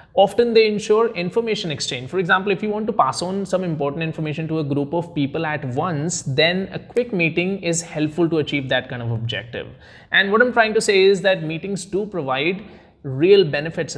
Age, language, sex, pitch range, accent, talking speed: 20-39, English, male, 140-190 Hz, Indian, 205 wpm